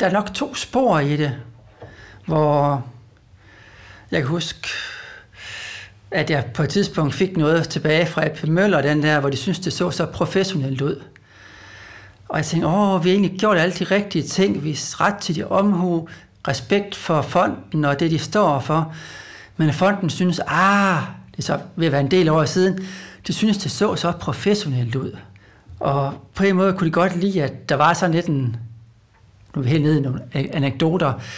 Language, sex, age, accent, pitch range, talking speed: Danish, male, 60-79, native, 140-185 Hz, 185 wpm